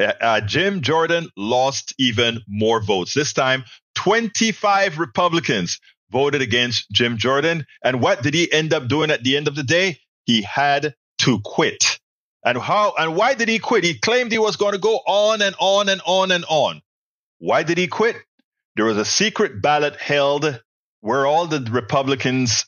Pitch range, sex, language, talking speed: 125-190 Hz, male, English, 175 wpm